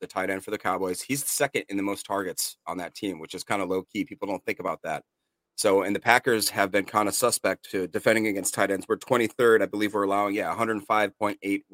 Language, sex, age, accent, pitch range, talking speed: English, male, 30-49, American, 95-110 Hz, 245 wpm